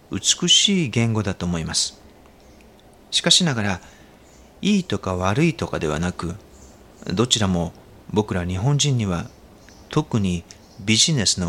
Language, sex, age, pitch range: Japanese, male, 40-59, 90-145 Hz